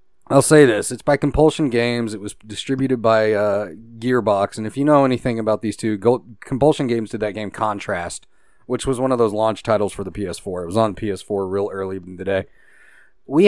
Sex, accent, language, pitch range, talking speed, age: male, American, English, 110-140 Hz, 215 wpm, 30-49